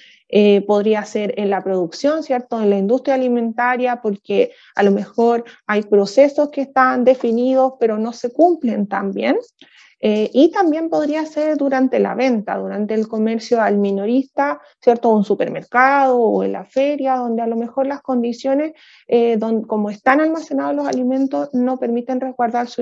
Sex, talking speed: female, 170 wpm